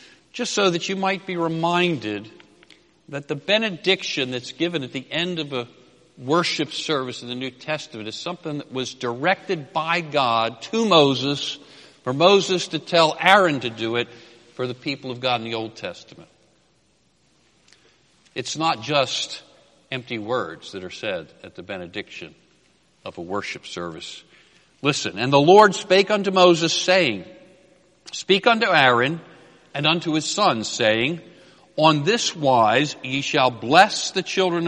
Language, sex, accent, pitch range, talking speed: English, male, American, 125-175 Hz, 150 wpm